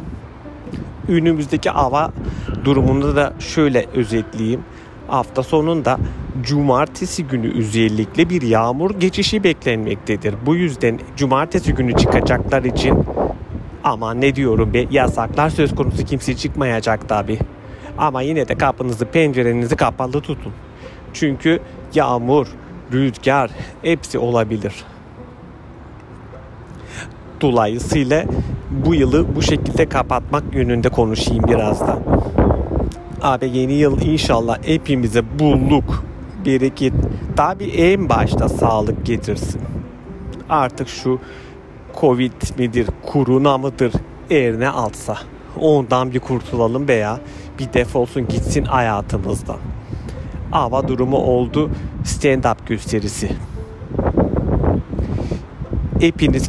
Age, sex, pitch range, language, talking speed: 40-59, male, 115-140 Hz, Turkish, 95 wpm